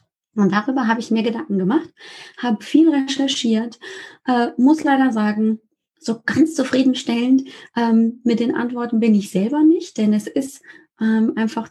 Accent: German